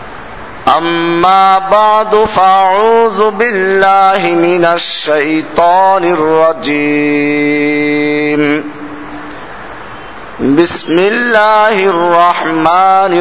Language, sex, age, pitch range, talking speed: Bengali, male, 50-69, 150-195 Hz, 45 wpm